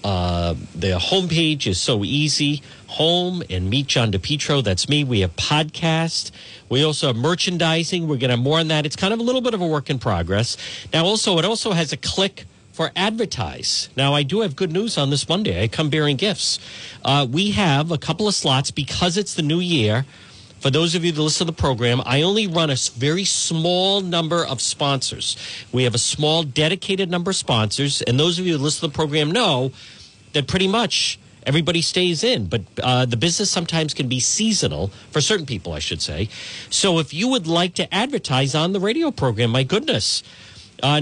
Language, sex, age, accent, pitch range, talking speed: English, male, 50-69, American, 125-175 Hz, 210 wpm